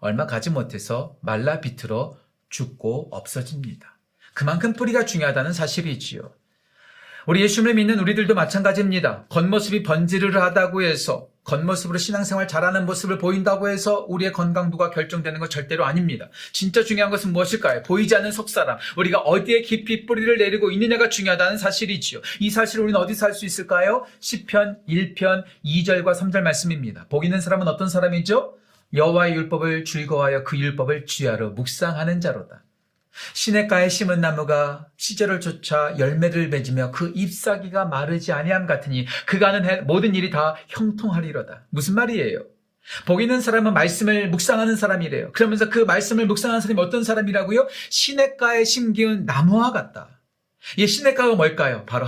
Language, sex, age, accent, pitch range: Korean, male, 40-59, native, 155-215 Hz